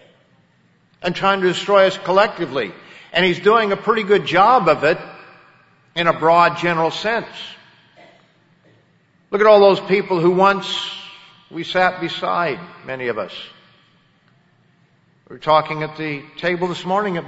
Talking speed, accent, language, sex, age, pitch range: 145 wpm, American, English, male, 50-69, 140-185 Hz